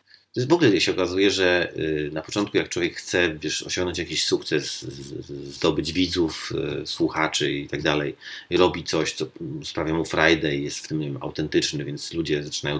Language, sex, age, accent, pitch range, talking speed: Polish, male, 30-49, native, 90-125 Hz, 170 wpm